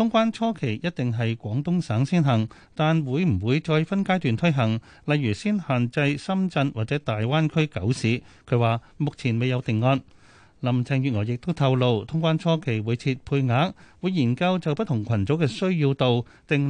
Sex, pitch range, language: male, 115-160 Hz, Chinese